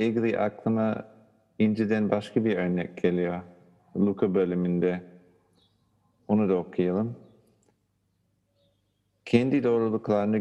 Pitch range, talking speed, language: 95-115 Hz, 80 wpm, Turkish